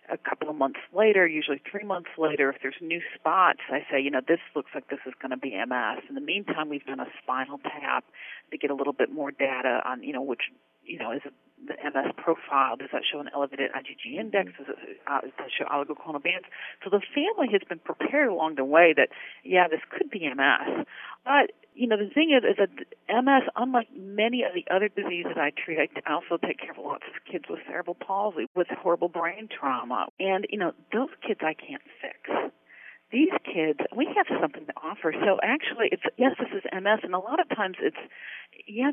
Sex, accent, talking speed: female, American, 220 wpm